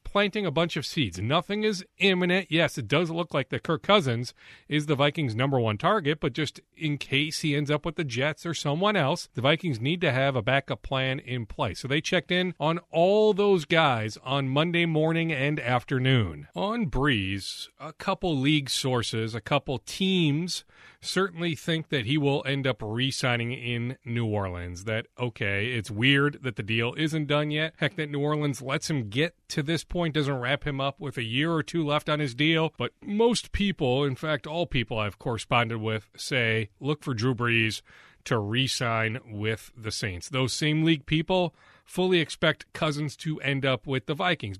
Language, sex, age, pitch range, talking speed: English, male, 40-59, 130-180 Hz, 195 wpm